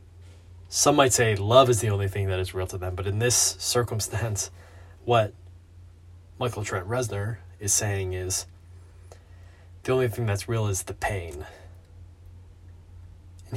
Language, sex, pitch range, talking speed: English, male, 90-110 Hz, 145 wpm